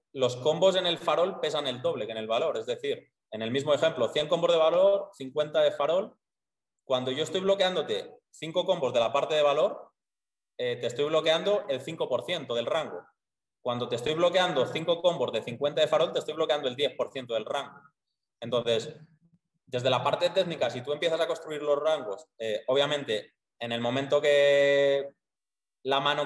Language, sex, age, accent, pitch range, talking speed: Spanish, male, 20-39, Spanish, 135-185 Hz, 185 wpm